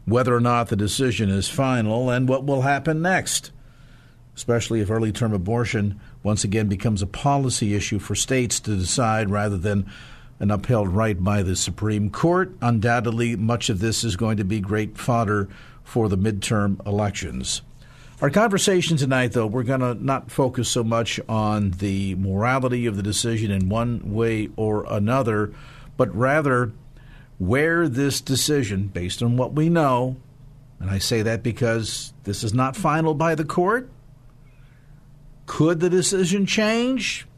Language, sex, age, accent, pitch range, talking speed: English, male, 50-69, American, 110-140 Hz, 155 wpm